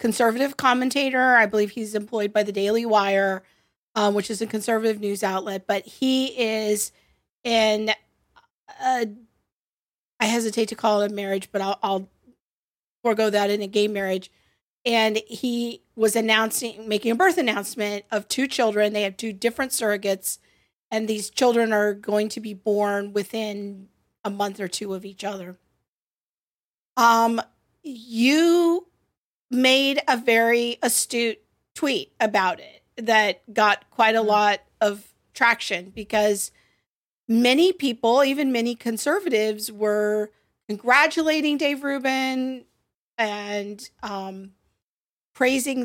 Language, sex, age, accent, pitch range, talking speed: English, female, 40-59, American, 210-240 Hz, 130 wpm